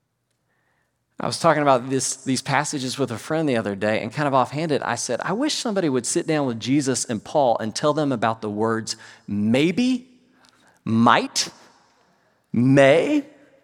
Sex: male